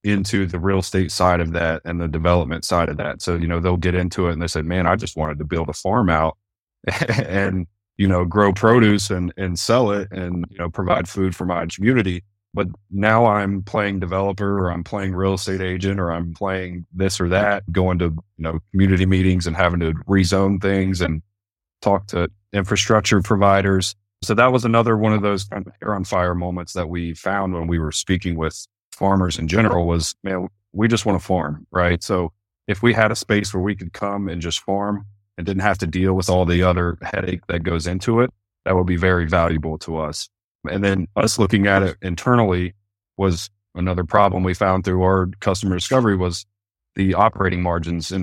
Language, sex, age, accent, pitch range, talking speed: English, male, 30-49, American, 90-100 Hz, 210 wpm